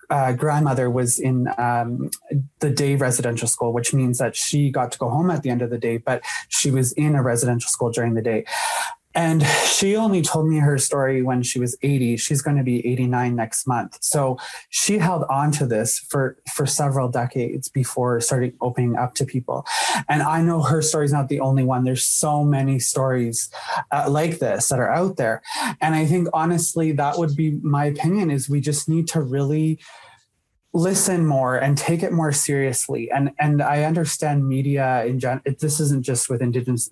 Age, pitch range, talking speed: 20-39, 130-155 Hz, 200 wpm